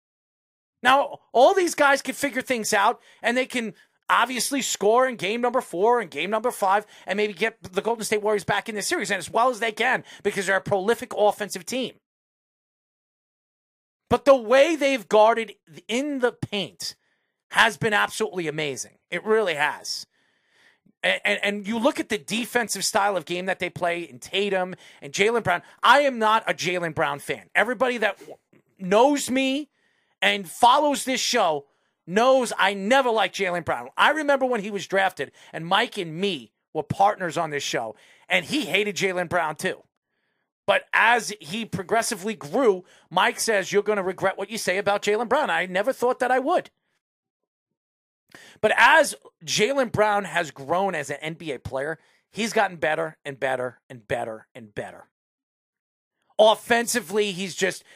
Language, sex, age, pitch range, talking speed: English, male, 30-49, 180-245 Hz, 170 wpm